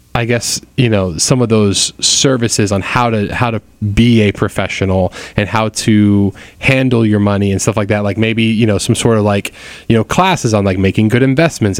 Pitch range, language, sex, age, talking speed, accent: 100-115 Hz, English, male, 20-39, 215 wpm, American